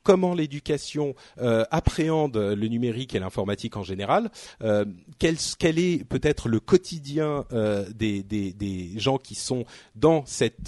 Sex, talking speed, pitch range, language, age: male, 145 wpm, 105-145 Hz, French, 40-59